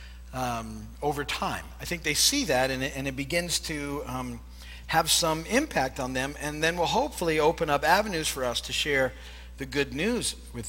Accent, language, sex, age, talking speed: American, English, male, 40-59, 195 wpm